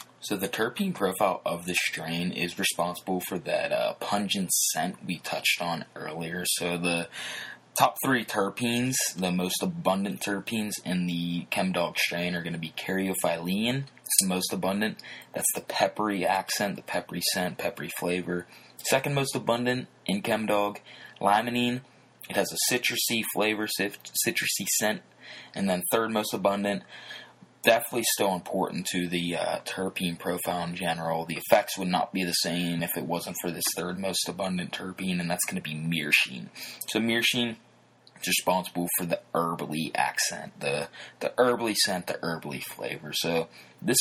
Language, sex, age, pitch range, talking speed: English, male, 20-39, 85-110 Hz, 160 wpm